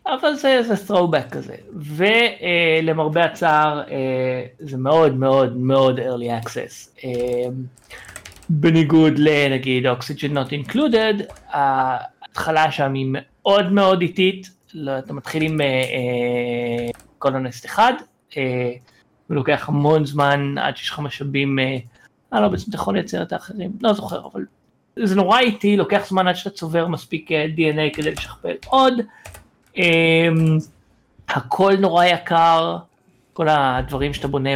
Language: Hebrew